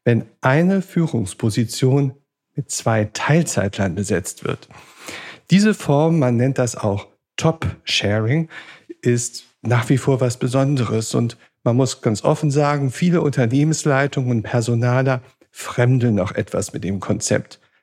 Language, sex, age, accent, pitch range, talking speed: German, male, 50-69, German, 120-145 Hz, 125 wpm